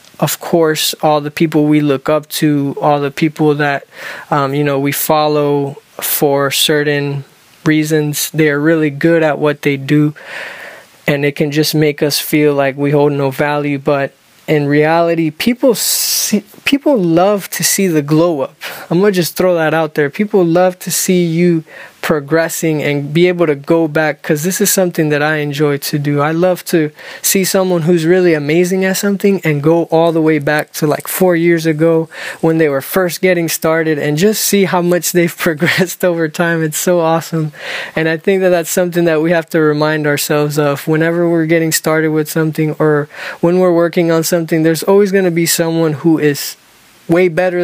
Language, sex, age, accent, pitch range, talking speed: English, male, 20-39, American, 150-175 Hz, 190 wpm